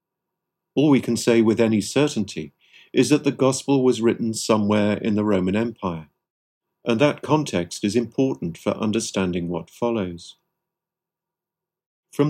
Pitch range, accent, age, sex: 105-140 Hz, British, 50-69, male